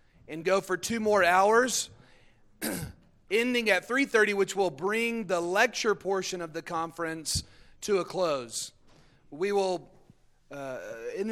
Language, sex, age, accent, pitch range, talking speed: English, male, 40-59, American, 150-195 Hz, 135 wpm